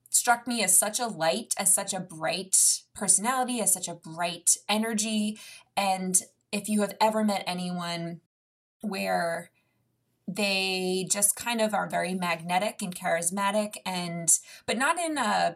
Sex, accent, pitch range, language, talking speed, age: female, American, 175-215 Hz, English, 145 wpm, 20-39